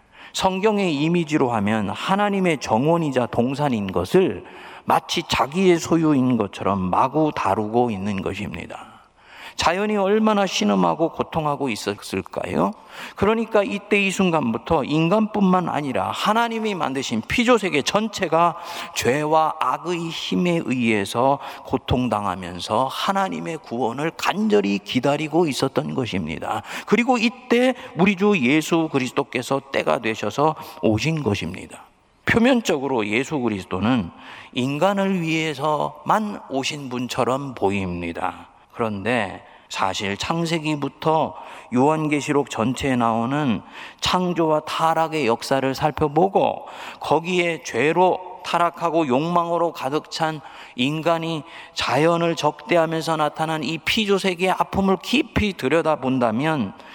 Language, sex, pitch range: Korean, male, 120-175 Hz